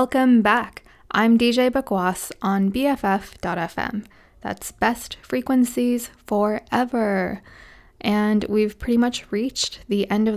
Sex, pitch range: female, 195-230 Hz